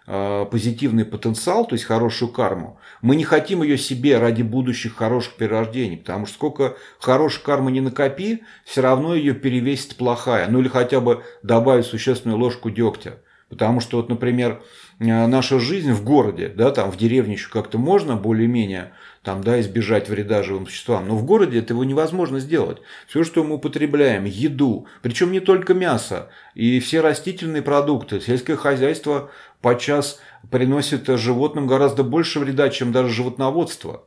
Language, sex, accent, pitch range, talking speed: Russian, male, native, 110-145 Hz, 155 wpm